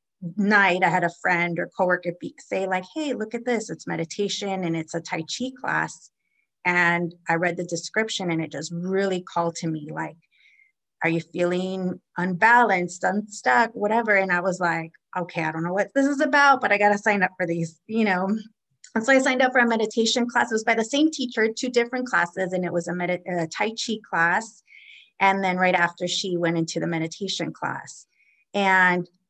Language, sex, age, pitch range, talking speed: English, female, 30-49, 175-220 Hz, 205 wpm